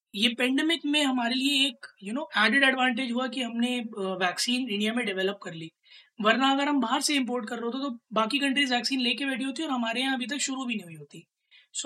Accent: native